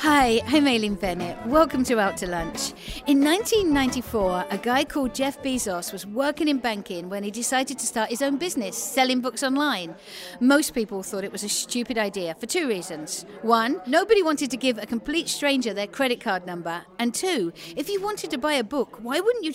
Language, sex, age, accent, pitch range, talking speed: English, female, 50-69, British, 215-290 Hz, 205 wpm